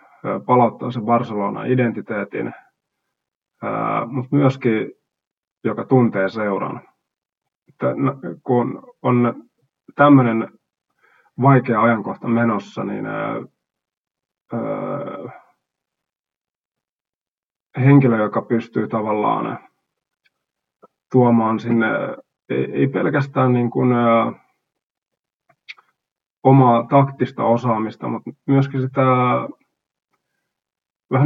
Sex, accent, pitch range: male, native, 115-130 Hz